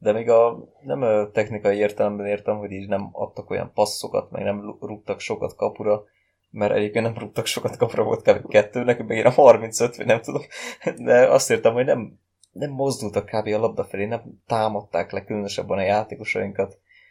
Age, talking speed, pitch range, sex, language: 20-39, 180 wpm, 100-115 Hz, male, Hungarian